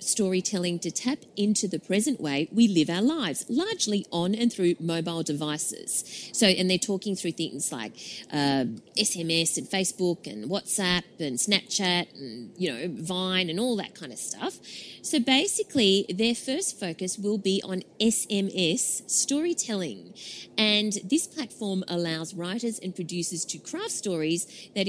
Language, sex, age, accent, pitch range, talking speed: English, female, 30-49, Australian, 180-250 Hz, 150 wpm